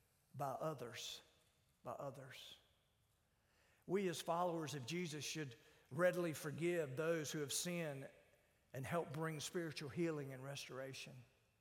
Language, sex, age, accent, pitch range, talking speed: English, male, 50-69, American, 150-220 Hz, 120 wpm